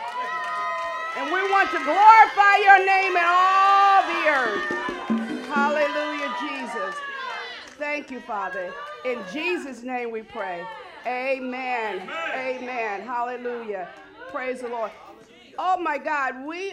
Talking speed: 110 wpm